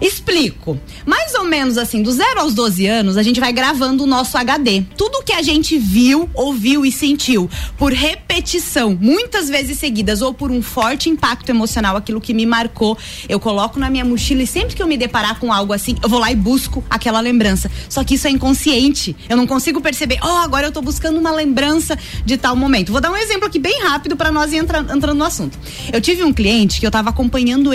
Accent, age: Brazilian, 20-39